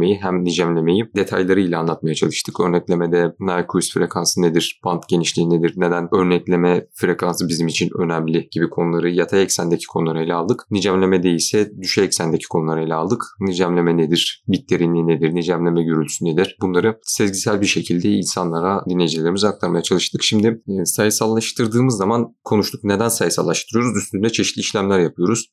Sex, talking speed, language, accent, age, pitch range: male, 135 wpm, Turkish, native, 30-49, 85-100 Hz